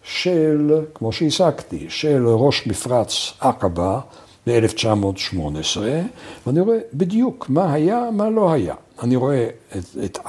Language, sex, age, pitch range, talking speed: Hebrew, male, 60-79, 110-155 Hz, 110 wpm